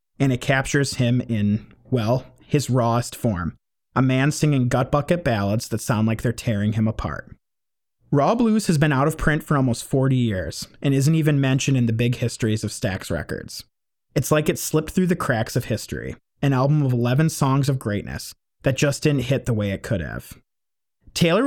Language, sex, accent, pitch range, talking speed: English, male, American, 110-140 Hz, 195 wpm